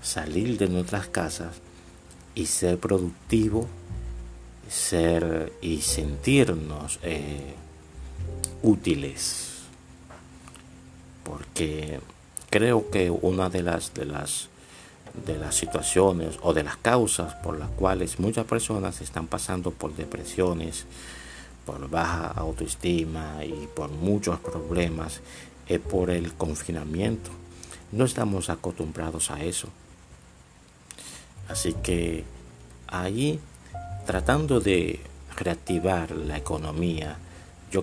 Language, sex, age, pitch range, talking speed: Spanish, male, 50-69, 80-90 Hz, 95 wpm